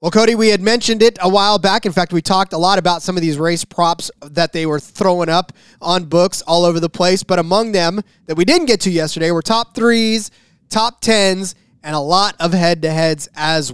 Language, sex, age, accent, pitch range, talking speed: English, male, 20-39, American, 165-200 Hz, 235 wpm